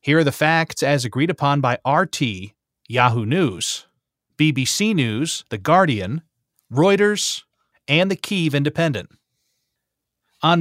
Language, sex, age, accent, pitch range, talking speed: English, male, 30-49, American, 125-165 Hz, 120 wpm